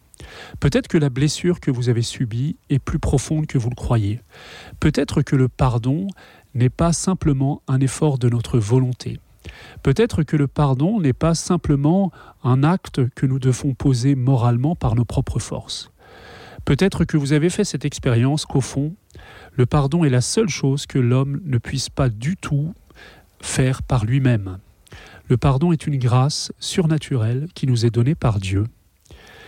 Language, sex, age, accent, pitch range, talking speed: French, male, 30-49, French, 120-150 Hz, 165 wpm